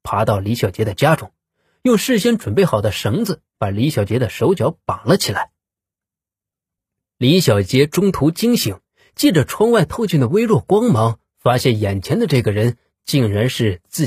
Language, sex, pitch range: Chinese, male, 110-170 Hz